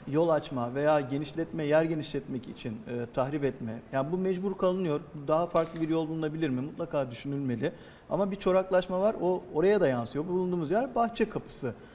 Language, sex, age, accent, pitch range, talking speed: Turkish, male, 50-69, native, 145-190 Hz, 175 wpm